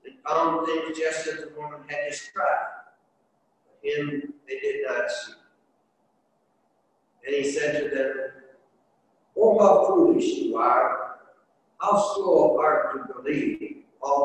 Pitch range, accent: 145-230 Hz, American